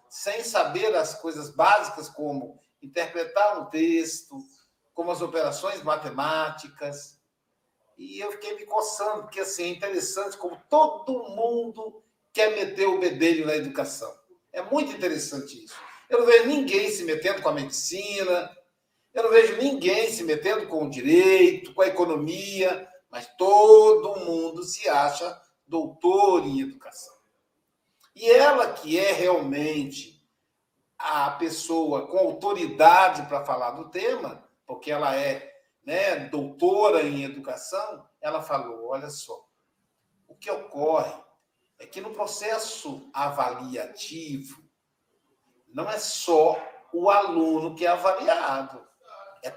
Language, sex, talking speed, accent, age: Portuguese, male, 125 wpm, Brazilian, 60-79